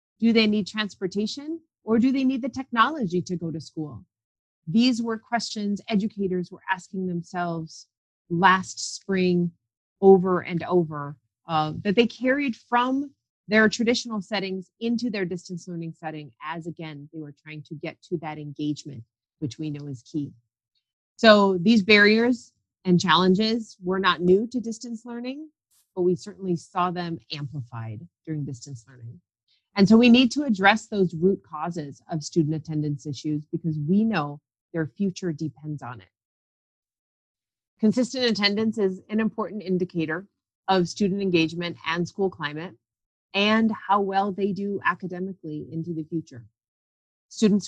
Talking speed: 145 wpm